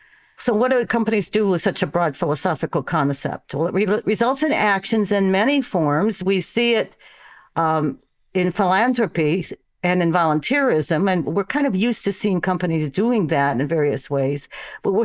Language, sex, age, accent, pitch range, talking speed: English, female, 60-79, American, 165-210 Hz, 170 wpm